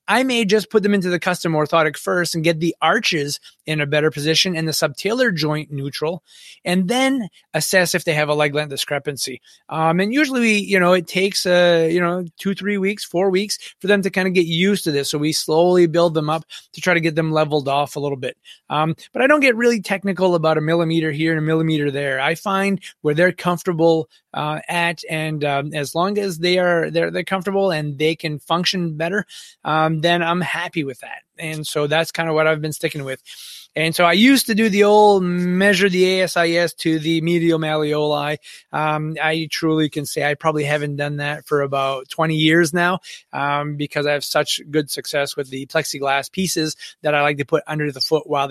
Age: 20-39